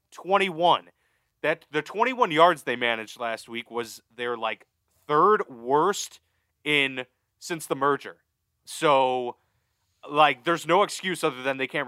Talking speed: 135 wpm